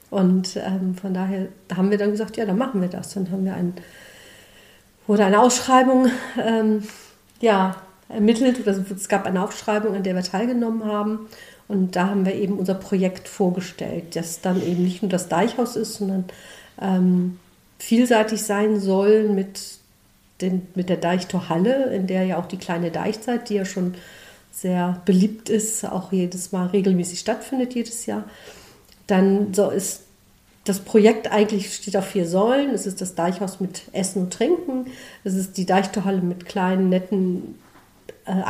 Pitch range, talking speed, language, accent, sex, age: 185-220 Hz, 160 wpm, German, German, female, 50-69